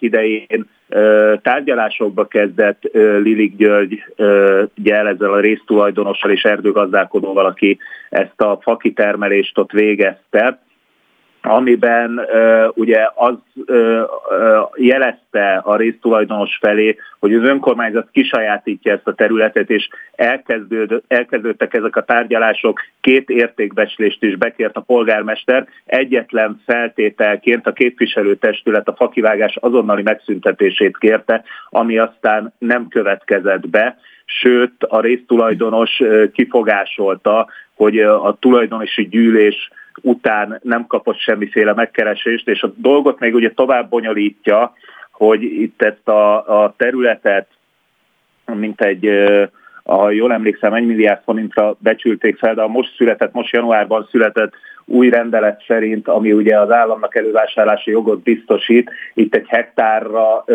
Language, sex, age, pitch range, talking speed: Hungarian, male, 30-49, 105-120 Hz, 115 wpm